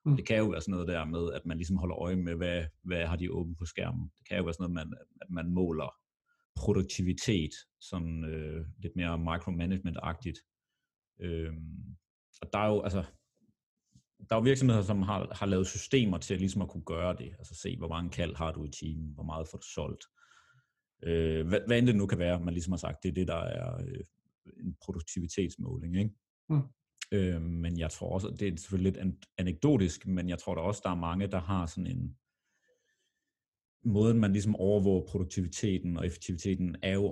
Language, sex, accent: Danish, male, native